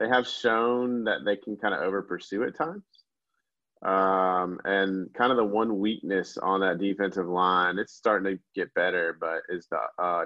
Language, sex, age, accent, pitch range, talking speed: English, male, 20-39, American, 90-105 Hz, 180 wpm